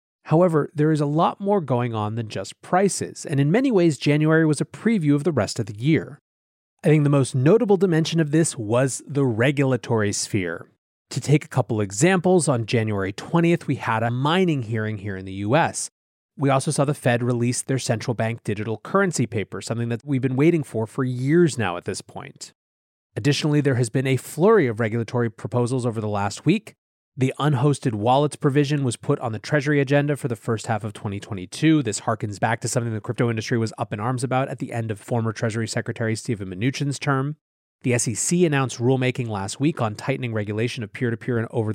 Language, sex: English, male